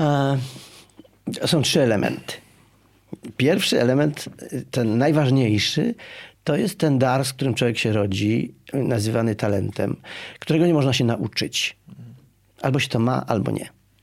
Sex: male